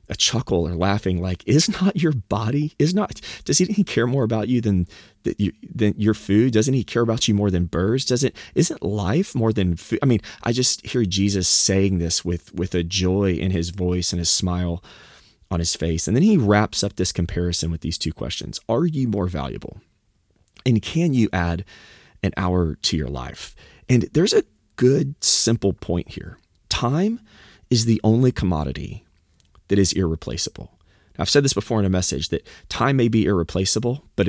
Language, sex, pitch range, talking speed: English, male, 85-115 Hz, 190 wpm